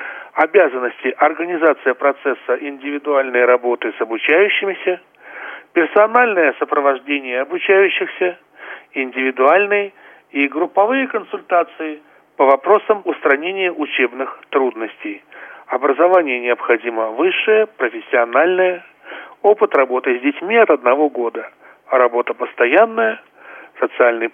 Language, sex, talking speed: Russian, male, 80 wpm